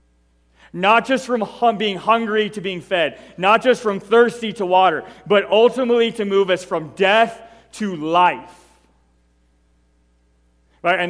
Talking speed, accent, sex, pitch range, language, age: 140 wpm, American, male, 120-200 Hz, English, 30-49